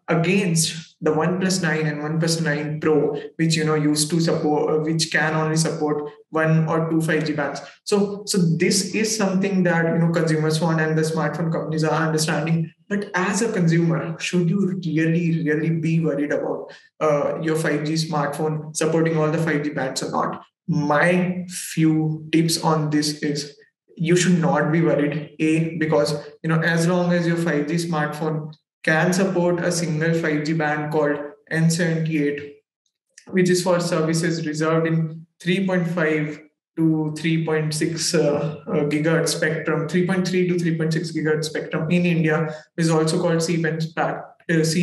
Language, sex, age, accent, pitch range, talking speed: English, male, 20-39, Indian, 155-170 Hz, 150 wpm